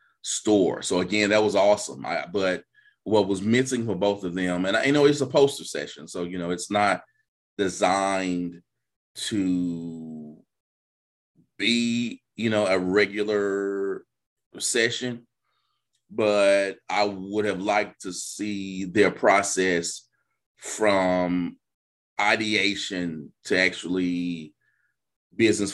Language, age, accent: English, 30-49, American